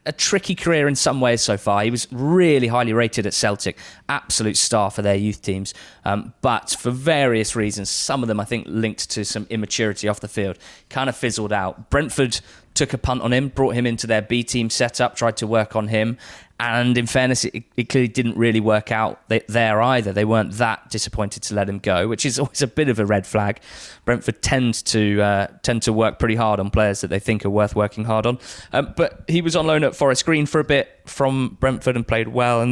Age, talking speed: 20-39, 230 wpm